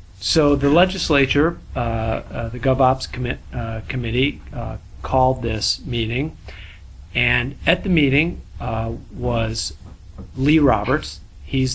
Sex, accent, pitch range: male, American, 100-130 Hz